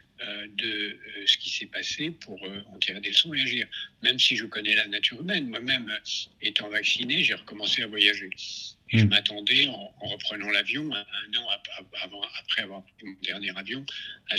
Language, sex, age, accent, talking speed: French, male, 60-79, French, 190 wpm